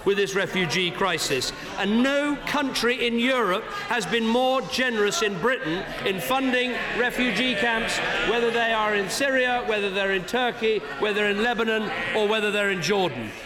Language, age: English, 50-69